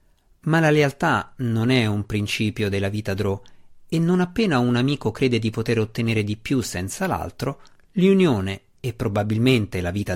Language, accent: Italian, native